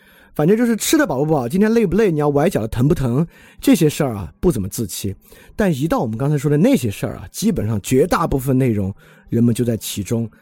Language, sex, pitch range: Chinese, male, 110-155 Hz